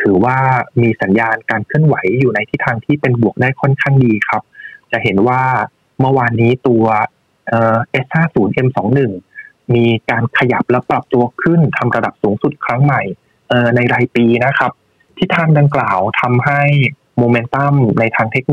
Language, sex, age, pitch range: Thai, male, 20-39, 115-140 Hz